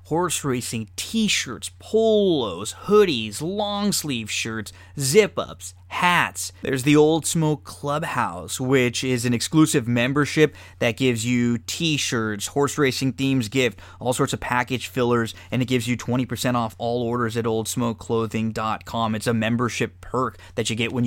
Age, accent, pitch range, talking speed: 20-39, American, 110-145 Hz, 150 wpm